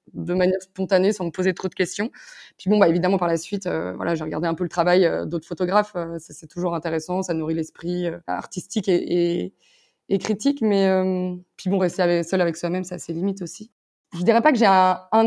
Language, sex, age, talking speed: French, female, 20-39, 225 wpm